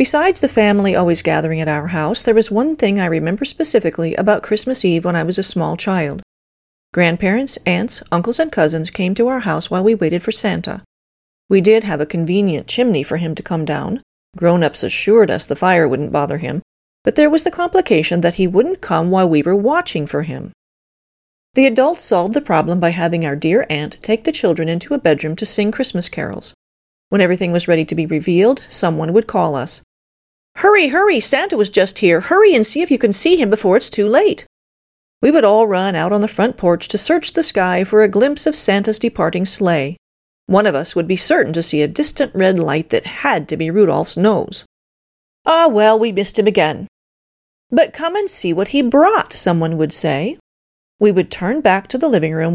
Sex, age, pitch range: female, 40-59, 165-235 Hz